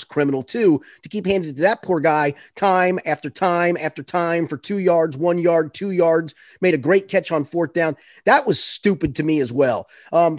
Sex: male